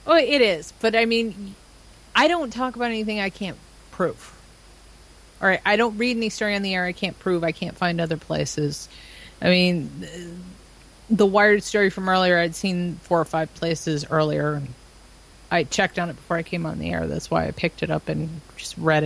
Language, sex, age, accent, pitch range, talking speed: English, female, 30-49, American, 160-195 Hz, 215 wpm